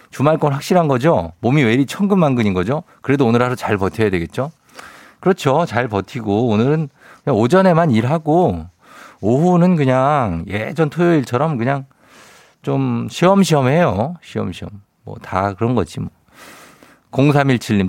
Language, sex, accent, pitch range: Korean, male, native, 100-145 Hz